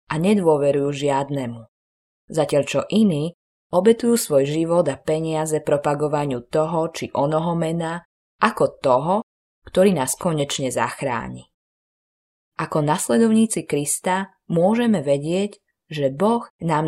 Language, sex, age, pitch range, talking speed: Slovak, female, 20-39, 140-175 Hz, 105 wpm